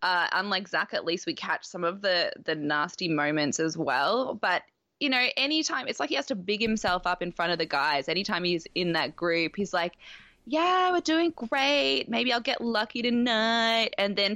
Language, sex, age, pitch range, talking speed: English, female, 20-39, 170-235 Hz, 210 wpm